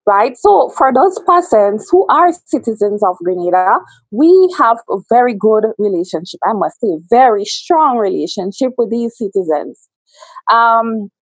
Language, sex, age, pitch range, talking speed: English, female, 20-39, 220-285 Hz, 140 wpm